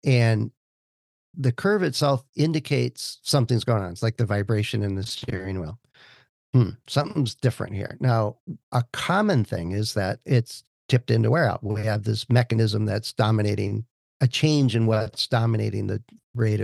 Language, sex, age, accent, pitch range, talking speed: English, male, 50-69, American, 110-130 Hz, 160 wpm